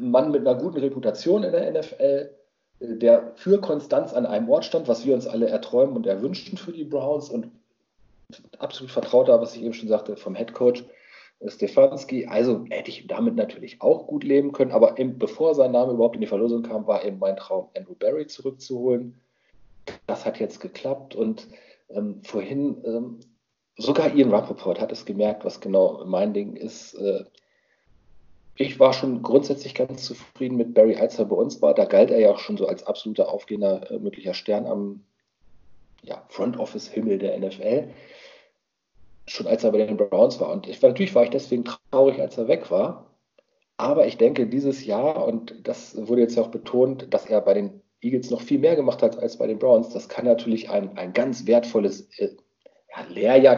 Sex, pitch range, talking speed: male, 110-140 Hz, 185 wpm